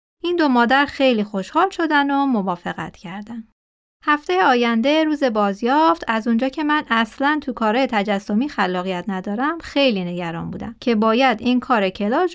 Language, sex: Persian, female